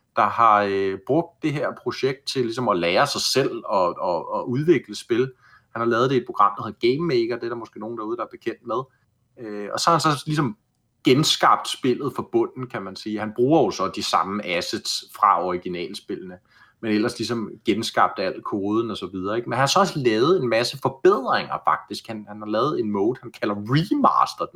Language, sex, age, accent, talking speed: Danish, male, 30-49, native, 210 wpm